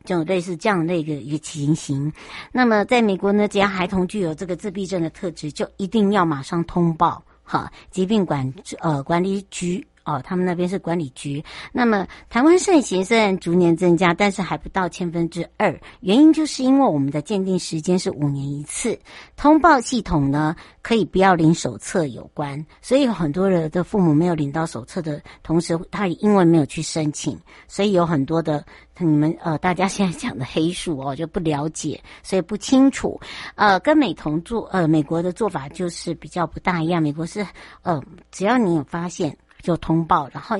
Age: 60-79